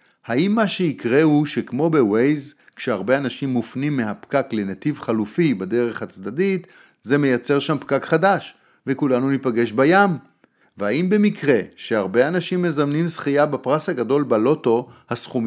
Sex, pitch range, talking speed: male, 115-165 Hz, 125 wpm